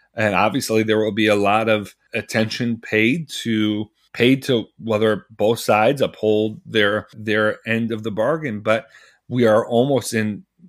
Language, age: English, 40-59